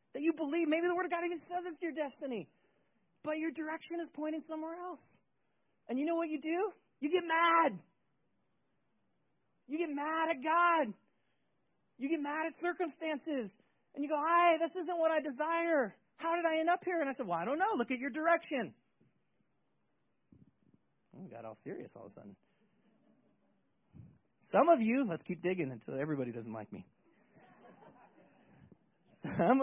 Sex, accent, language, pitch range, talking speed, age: male, American, English, 220-325 Hz, 175 wpm, 30-49